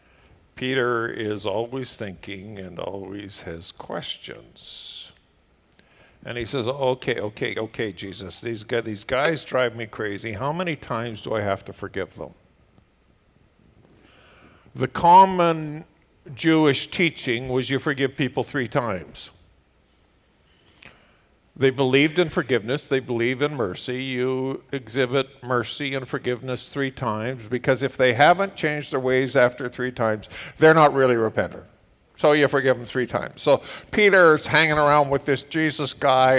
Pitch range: 115-140 Hz